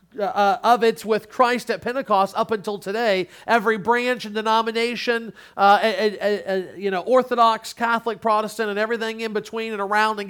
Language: English